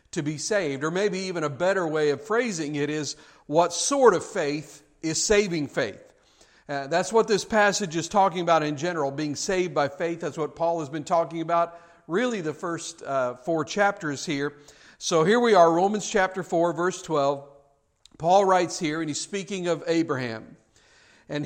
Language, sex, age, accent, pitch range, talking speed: English, male, 50-69, American, 150-190 Hz, 185 wpm